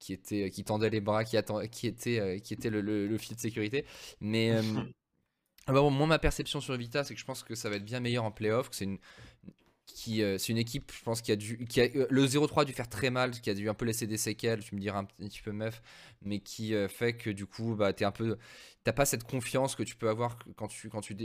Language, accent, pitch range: French, French, 105-125 Hz